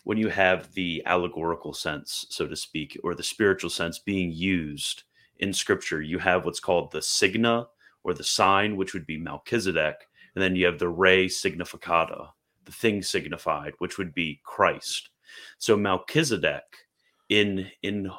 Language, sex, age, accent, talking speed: English, male, 30-49, American, 160 wpm